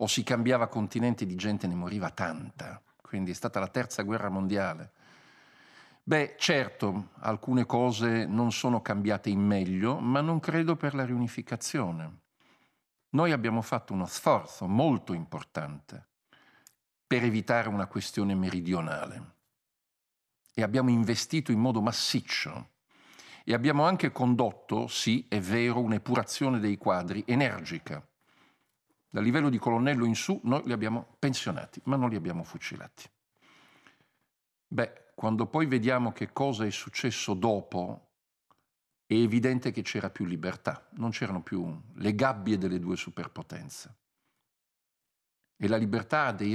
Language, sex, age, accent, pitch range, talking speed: Italian, male, 50-69, native, 100-125 Hz, 135 wpm